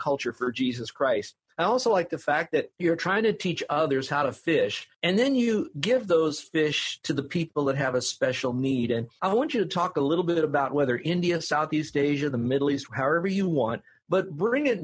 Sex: male